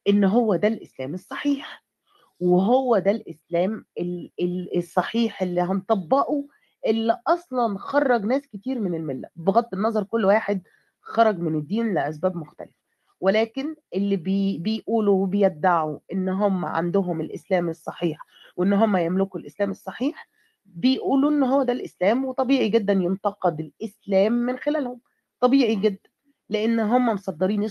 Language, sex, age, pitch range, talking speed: Arabic, female, 30-49, 185-240 Hz, 125 wpm